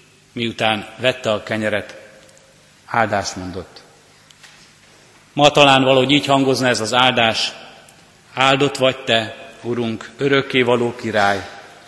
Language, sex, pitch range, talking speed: Hungarian, male, 115-135 Hz, 105 wpm